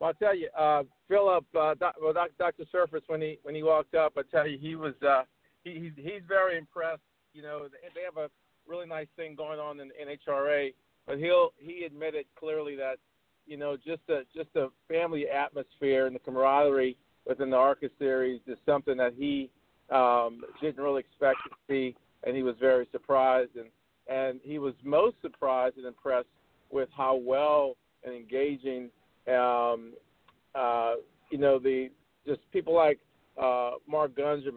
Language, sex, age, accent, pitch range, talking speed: English, male, 50-69, American, 130-150 Hz, 175 wpm